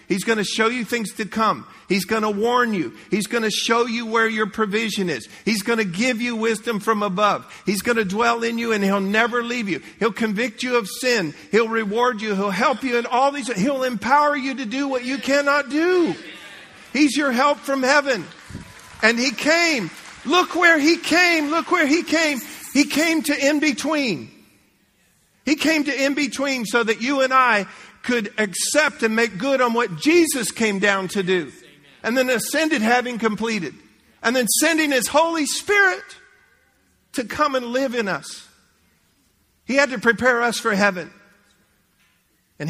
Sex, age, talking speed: male, 50-69, 185 wpm